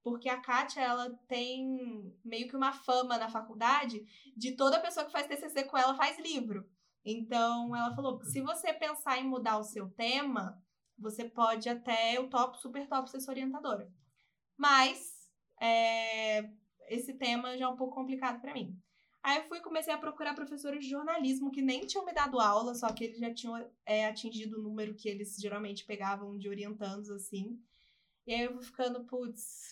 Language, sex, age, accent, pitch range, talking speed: Portuguese, female, 10-29, Brazilian, 220-275 Hz, 180 wpm